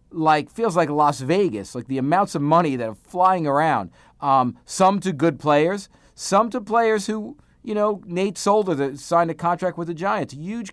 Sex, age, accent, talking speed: male, 40-59, American, 190 wpm